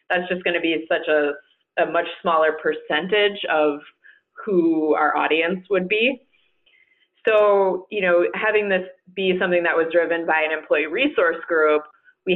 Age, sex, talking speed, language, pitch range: 20-39, female, 155 wpm, English, 155-185 Hz